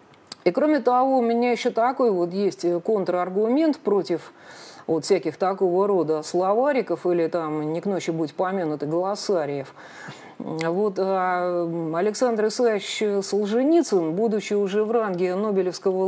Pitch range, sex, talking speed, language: 180-240 Hz, female, 125 wpm, Russian